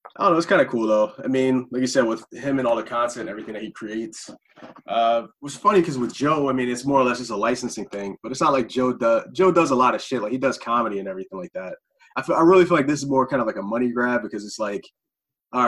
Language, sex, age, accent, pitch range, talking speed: English, male, 20-39, American, 105-130 Hz, 305 wpm